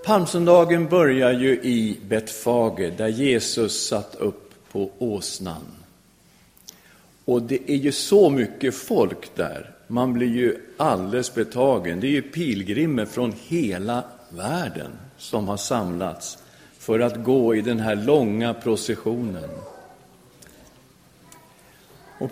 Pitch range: 110-160 Hz